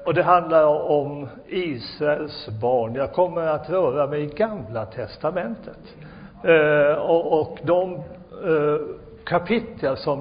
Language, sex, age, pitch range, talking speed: Swedish, male, 60-79, 145-180 Hz, 110 wpm